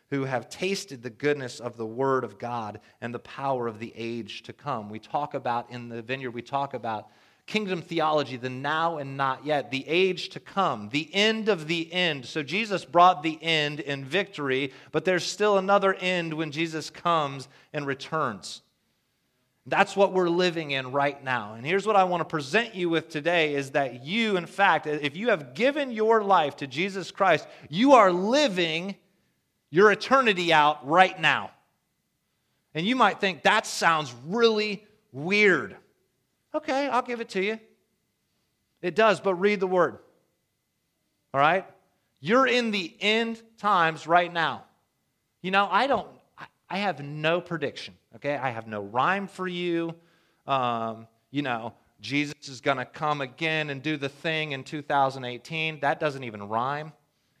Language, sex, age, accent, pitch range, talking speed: English, male, 30-49, American, 135-190 Hz, 170 wpm